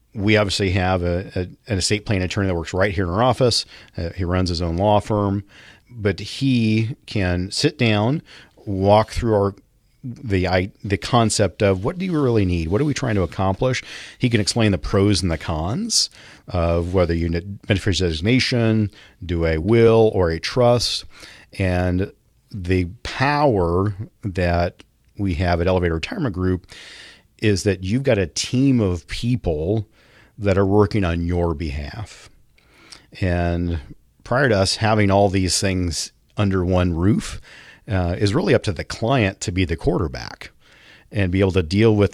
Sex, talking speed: male, 170 wpm